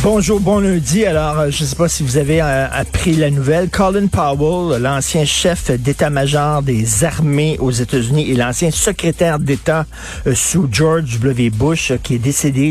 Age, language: 50-69, French